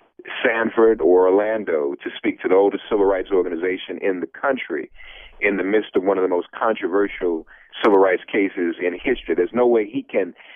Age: 40-59